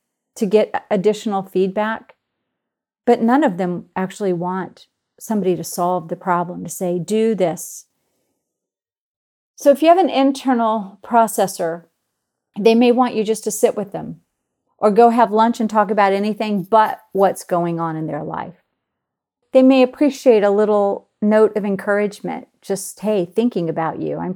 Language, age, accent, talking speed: English, 40-59, American, 160 wpm